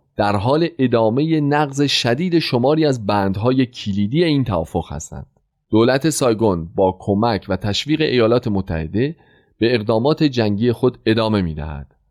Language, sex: Persian, male